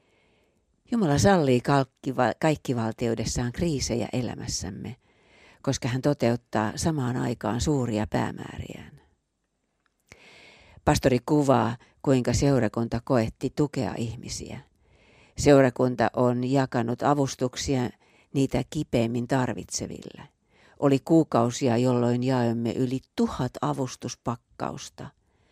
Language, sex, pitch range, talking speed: Finnish, female, 115-135 Hz, 85 wpm